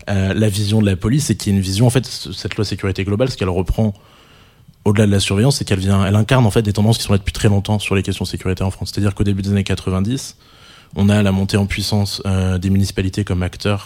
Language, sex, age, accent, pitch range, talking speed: French, male, 20-39, French, 95-110 Hz, 275 wpm